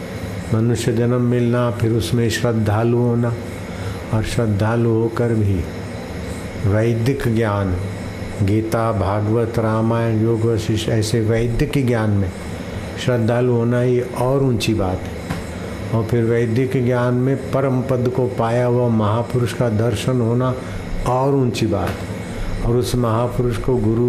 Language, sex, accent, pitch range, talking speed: Hindi, male, native, 95-120 Hz, 130 wpm